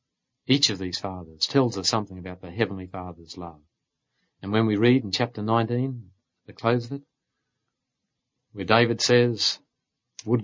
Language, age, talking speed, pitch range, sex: English, 50-69, 155 wpm, 95-125 Hz, male